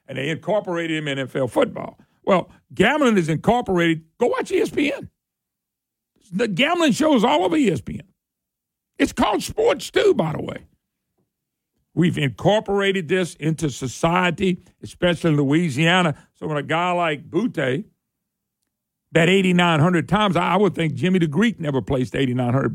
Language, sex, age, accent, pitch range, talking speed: English, male, 50-69, American, 170-240 Hz, 140 wpm